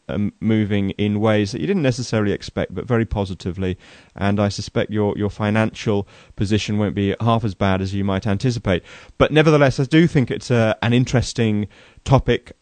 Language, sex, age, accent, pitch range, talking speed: English, male, 30-49, British, 95-115 Hz, 180 wpm